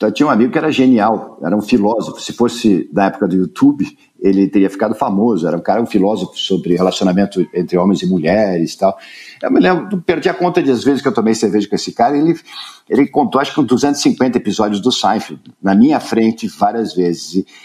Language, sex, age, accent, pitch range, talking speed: Portuguese, male, 50-69, Brazilian, 100-165 Hz, 220 wpm